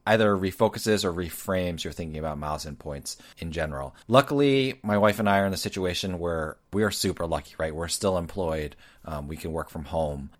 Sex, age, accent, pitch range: male, 30-49, American, 80-100 Hz